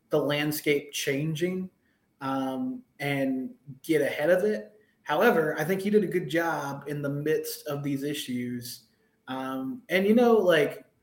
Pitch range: 135-155 Hz